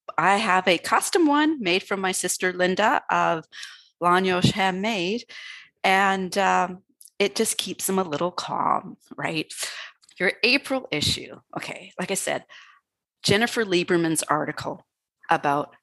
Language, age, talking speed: English, 30-49, 130 wpm